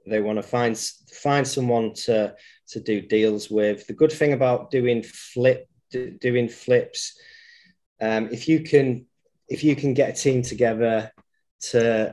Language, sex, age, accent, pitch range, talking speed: English, male, 30-49, British, 110-130 Hz, 155 wpm